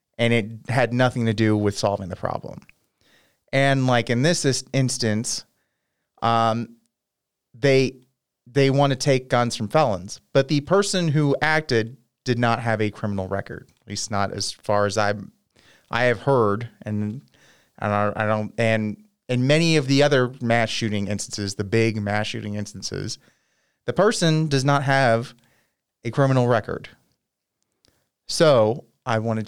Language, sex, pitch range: English, male, 105-130 Hz